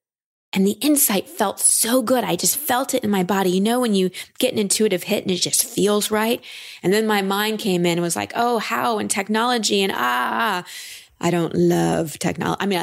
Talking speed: 220 wpm